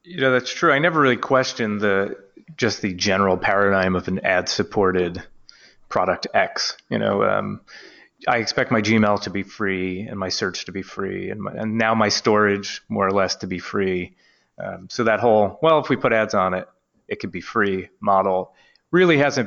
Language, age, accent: English, 30-49, American